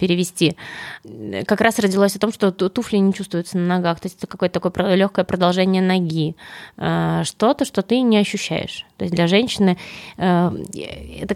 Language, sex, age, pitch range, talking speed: Russian, female, 20-39, 175-200 Hz, 160 wpm